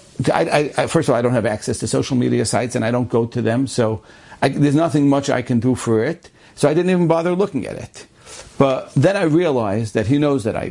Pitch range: 110-150 Hz